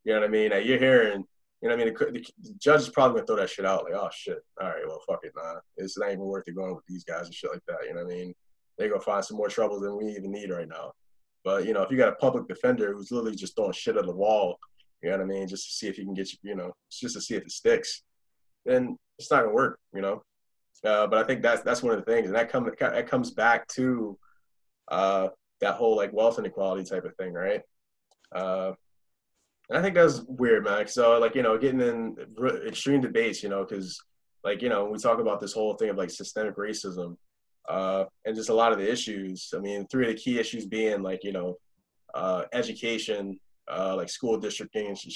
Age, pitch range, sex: 20-39, 95-130 Hz, male